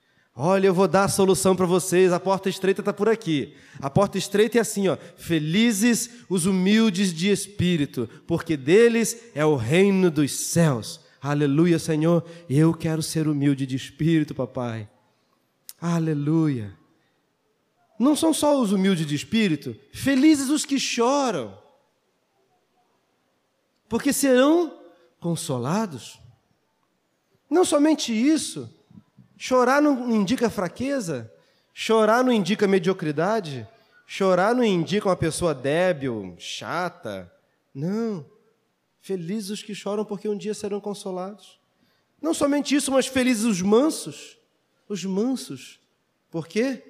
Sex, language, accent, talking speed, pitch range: male, Portuguese, Brazilian, 120 wpm, 160-235 Hz